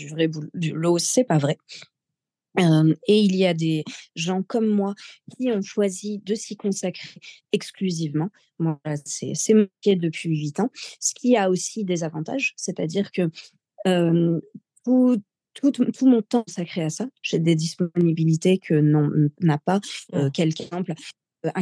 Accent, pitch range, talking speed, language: French, 160-200 Hz, 160 wpm, French